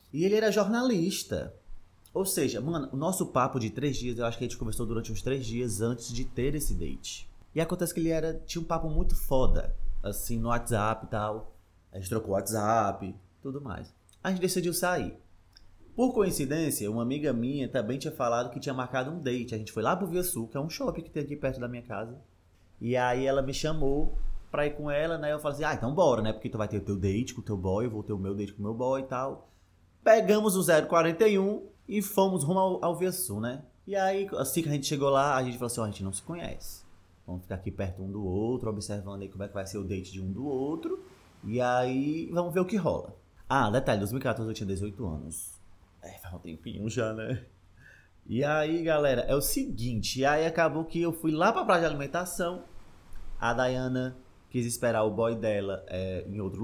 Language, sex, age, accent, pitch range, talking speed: Portuguese, male, 20-39, Brazilian, 100-150 Hz, 235 wpm